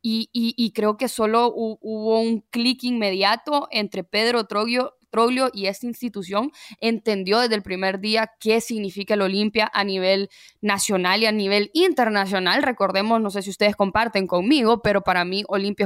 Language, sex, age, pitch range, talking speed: English, female, 10-29, 195-245 Hz, 170 wpm